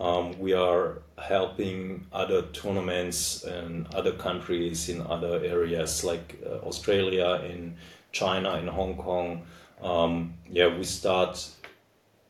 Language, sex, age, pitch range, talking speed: English, male, 30-49, 85-95 Hz, 115 wpm